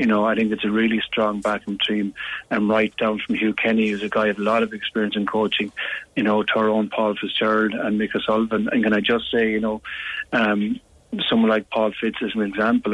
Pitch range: 105-115 Hz